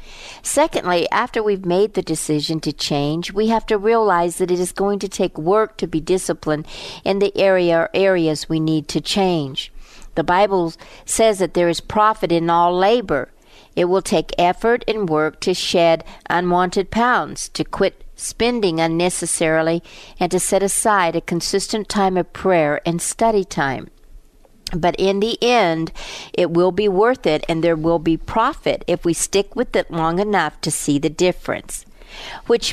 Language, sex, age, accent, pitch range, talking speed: English, female, 60-79, American, 165-200 Hz, 170 wpm